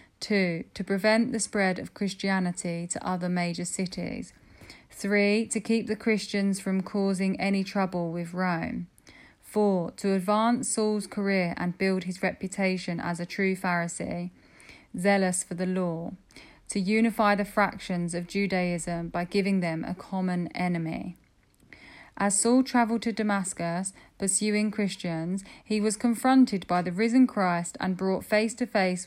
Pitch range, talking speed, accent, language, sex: 180-210 Hz, 145 wpm, British, English, female